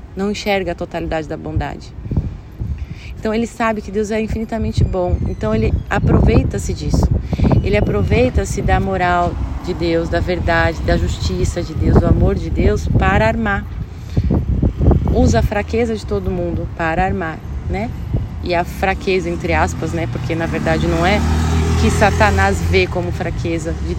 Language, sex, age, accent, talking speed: Portuguese, female, 30-49, Brazilian, 155 wpm